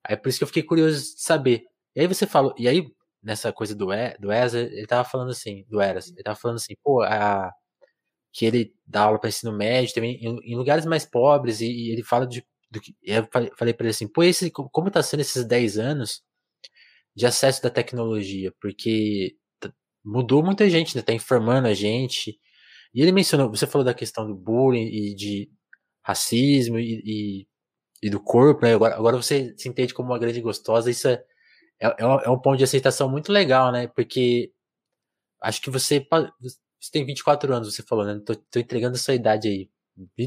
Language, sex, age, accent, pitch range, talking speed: Portuguese, male, 20-39, Brazilian, 115-135 Hz, 205 wpm